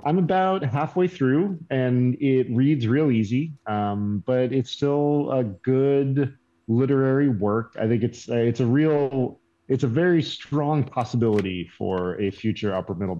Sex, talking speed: male, 155 wpm